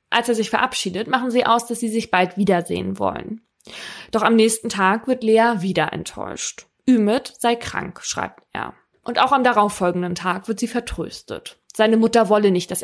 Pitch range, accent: 185-235 Hz, German